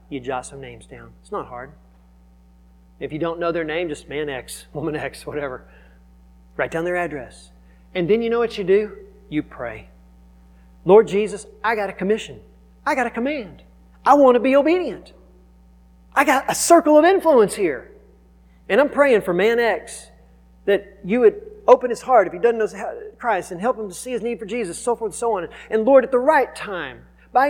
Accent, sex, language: American, male, English